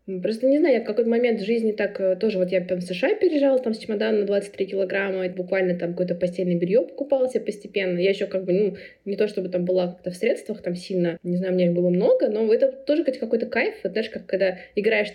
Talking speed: 250 wpm